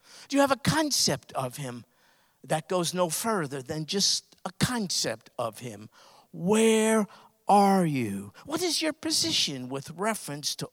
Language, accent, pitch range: English, American, 150-230 Hz